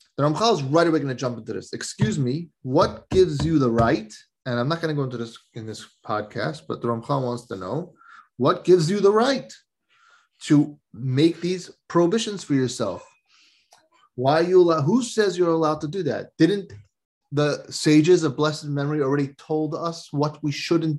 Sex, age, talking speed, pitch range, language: male, 30-49, 190 wpm, 125-165 Hz, English